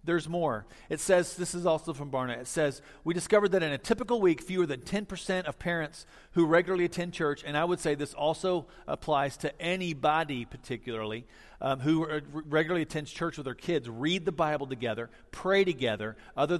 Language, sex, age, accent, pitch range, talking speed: English, male, 40-59, American, 120-175 Hz, 190 wpm